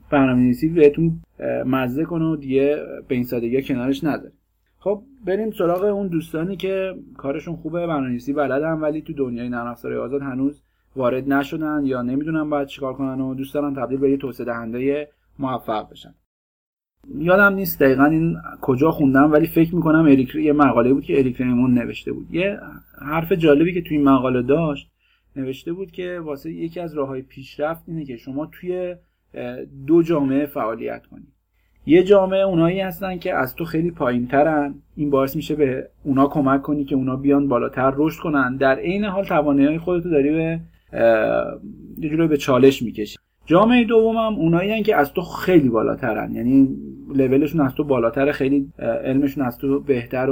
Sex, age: male, 30-49